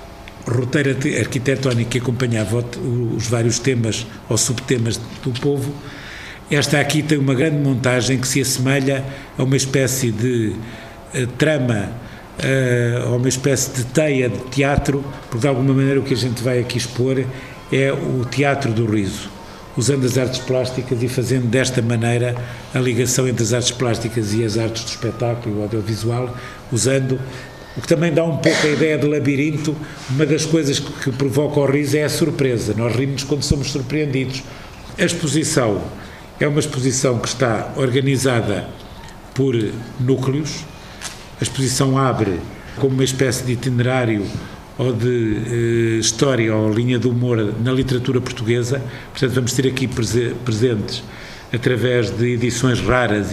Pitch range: 115-135 Hz